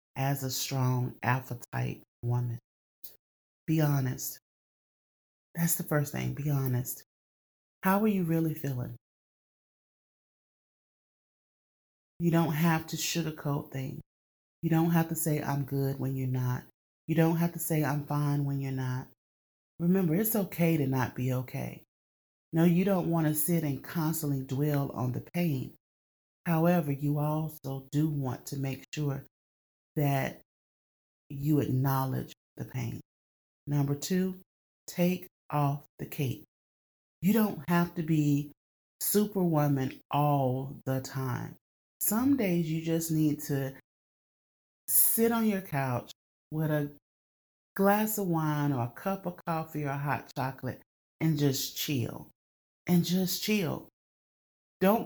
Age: 30-49